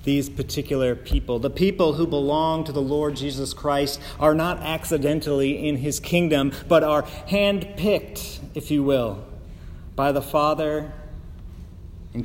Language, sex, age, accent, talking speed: English, male, 40-59, American, 135 wpm